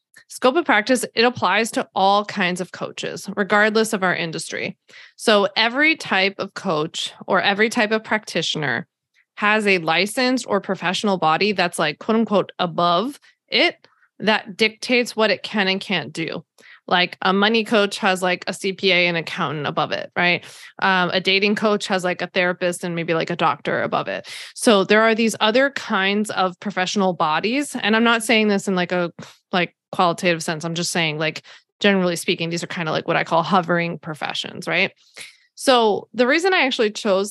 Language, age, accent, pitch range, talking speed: English, 20-39, American, 180-215 Hz, 185 wpm